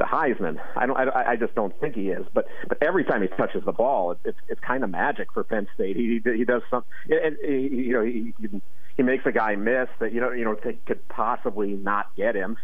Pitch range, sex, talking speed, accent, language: 100-120 Hz, male, 240 wpm, American, English